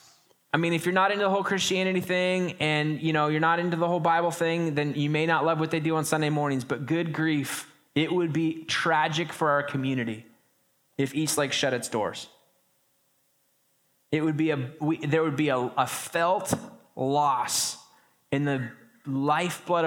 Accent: American